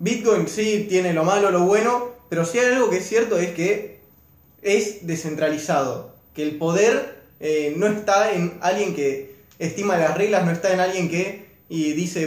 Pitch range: 155-205 Hz